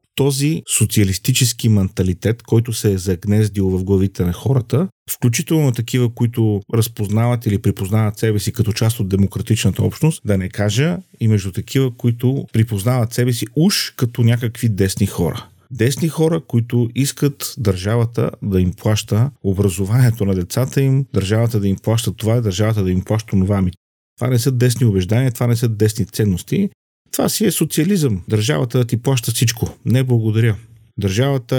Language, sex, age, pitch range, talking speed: Bulgarian, male, 40-59, 100-125 Hz, 160 wpm